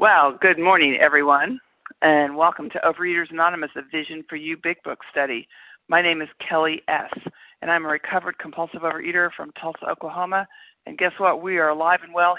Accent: American